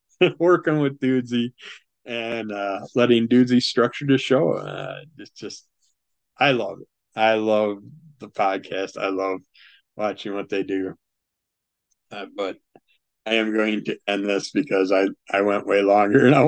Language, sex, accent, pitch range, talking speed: English, male, American, 105-135 Hz, 155 wpm